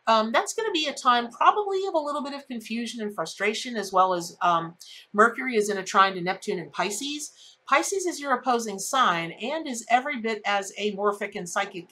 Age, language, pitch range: 40-59, English, 195-260 Hz